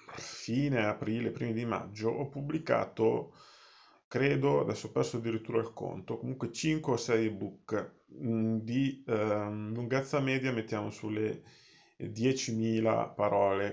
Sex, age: male, 30-49